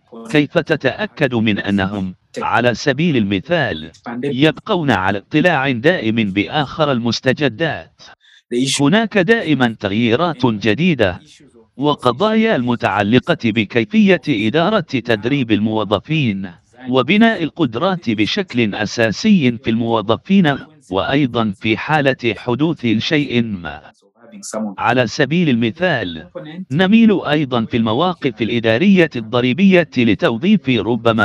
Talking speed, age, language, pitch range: 90 wpm, 50-69, English, 115-160 Hz